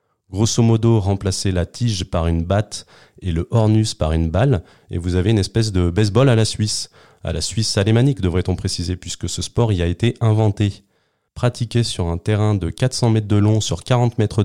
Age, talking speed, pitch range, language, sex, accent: 30-49, 205 wpm, 90-115 Hz, French, male, French